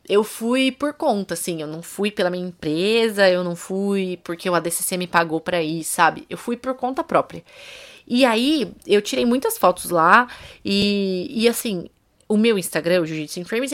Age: 20-39